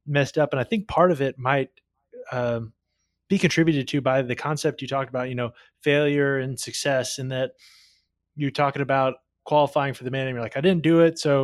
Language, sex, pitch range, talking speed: English, male, 130-150 Hz, 215 wpm